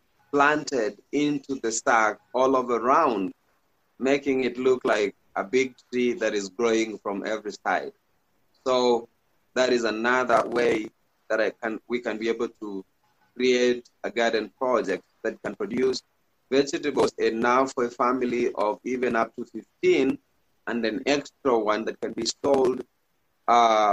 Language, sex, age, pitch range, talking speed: English, male, 30-49, 110-130 Hz, 150 wpm